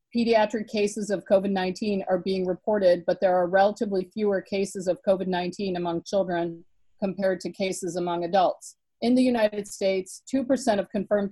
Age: 50-69